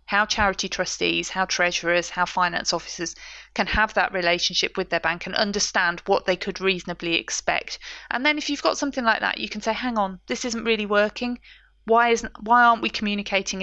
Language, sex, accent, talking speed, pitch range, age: English, female, British, 200 wpm, 180-220 Hz, 30-49